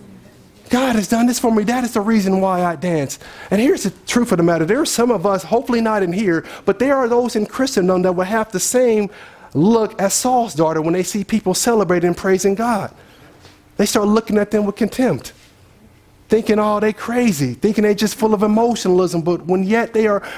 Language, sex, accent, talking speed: English, male, American, 220 wpm